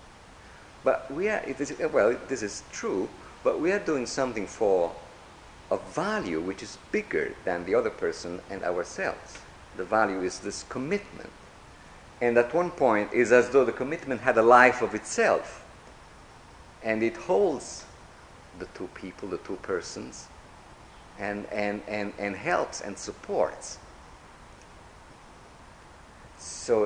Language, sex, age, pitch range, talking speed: English, male, 50-69, 90-120 Hz, 140 wpm